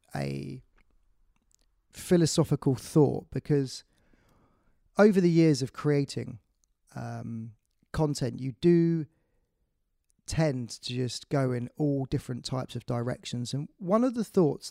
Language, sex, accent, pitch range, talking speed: English, male, British, 125-160 Hz, 115 wpm